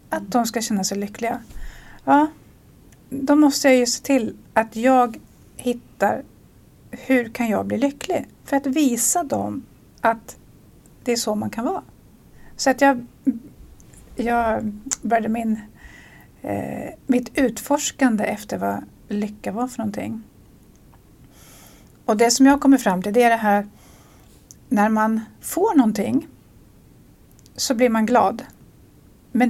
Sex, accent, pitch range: female, Swedish, 220-265 Hz